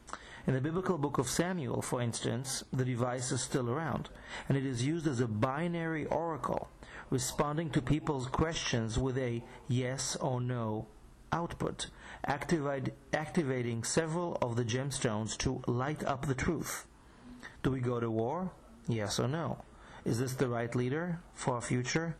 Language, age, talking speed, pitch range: English, 40-59, 155 wpm, 125-155 Hz